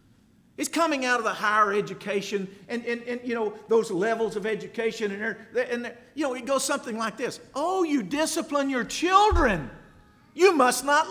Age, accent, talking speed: 50-69, American, 180 wpm